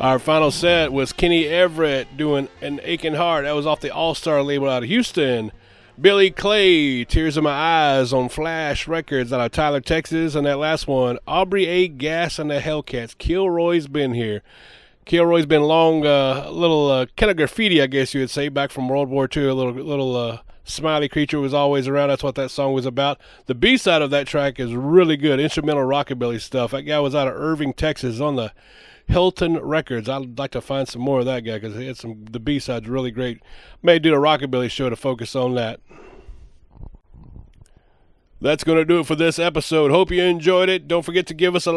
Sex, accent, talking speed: male, American, 210 wpm